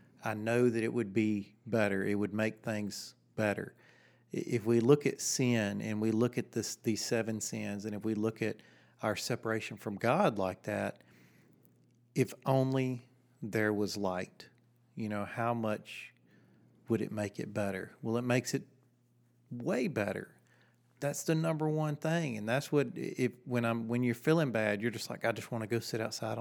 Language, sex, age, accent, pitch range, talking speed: English, male, 40-59, American, 110-125 Hz, 185 wpm